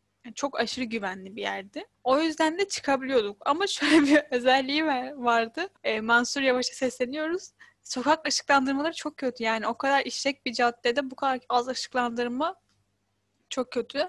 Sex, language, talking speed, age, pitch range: female, Turkish, 150 wpm, 10-29, 215-265 Hz